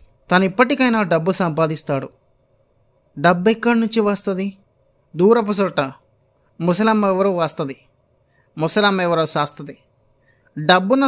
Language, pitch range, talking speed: Telugu, 135-185 Hz, 90 wpm